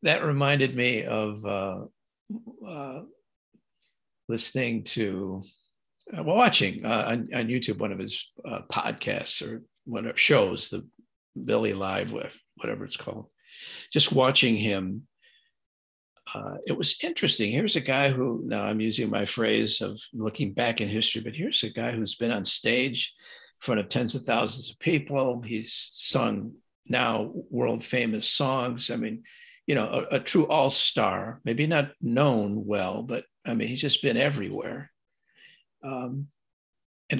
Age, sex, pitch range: 50-69, male, 110-165 Hz